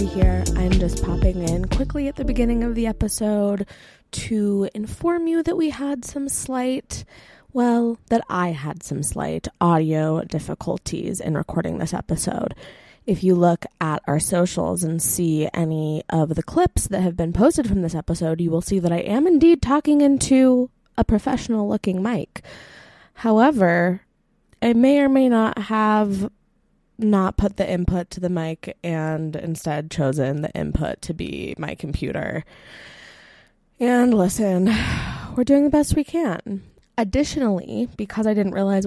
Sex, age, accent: female, 20-39, American